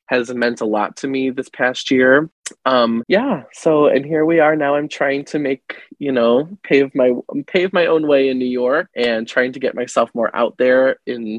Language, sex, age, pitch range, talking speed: English, male, 20-39, 120-145 Hz, 215 wpm